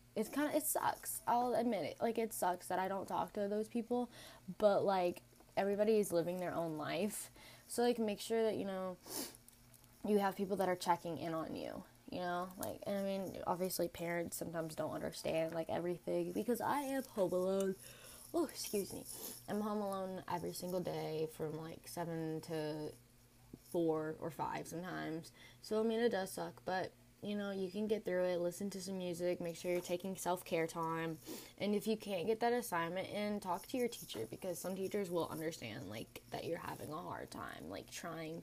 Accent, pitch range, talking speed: American, 165-205 Hz, 200 wpm